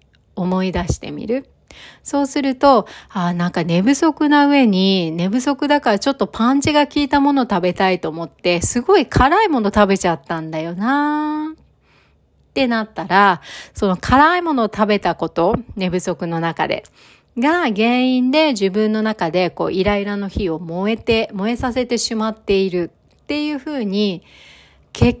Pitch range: 180-270 Hz